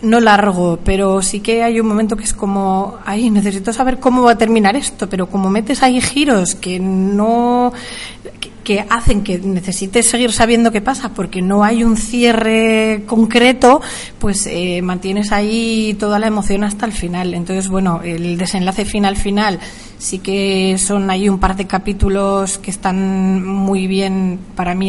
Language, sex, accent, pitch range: Spanish, female, Spanish, 190-215 Hz